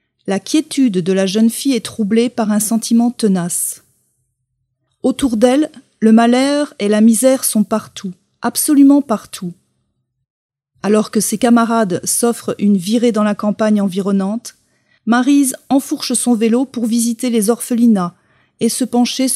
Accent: French